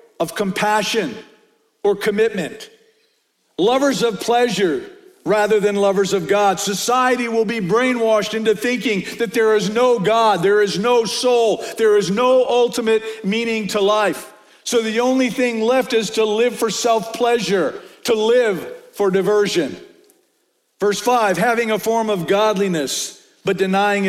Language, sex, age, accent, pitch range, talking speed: English, male, 50-69, American, 200-245 Hz, 140 wpm